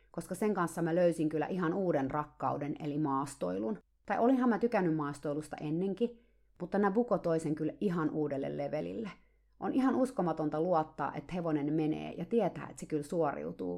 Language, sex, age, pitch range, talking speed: Finnish, female, 30-49, 150-180 Hz, 160 wpm